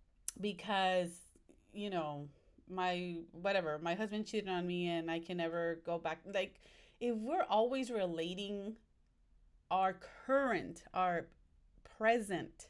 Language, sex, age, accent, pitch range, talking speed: English, female, 30-49, American, 170-220 Hz, 120 wpm